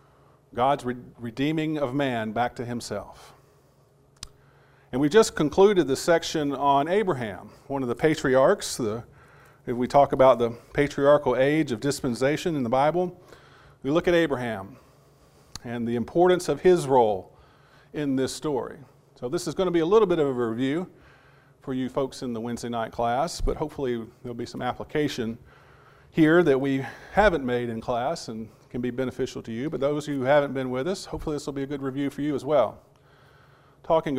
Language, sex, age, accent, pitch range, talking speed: English, male, 40-59, American, 120-150 Hz, 175 wpm